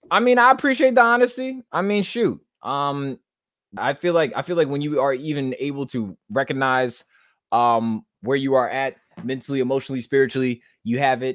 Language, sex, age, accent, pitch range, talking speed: English, male, 20-39, American, 95-130 Hz, 180 wpm